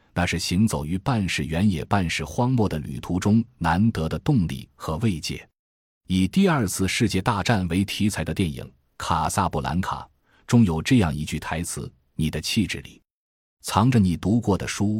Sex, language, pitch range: male, Chinese, 80-105 Hz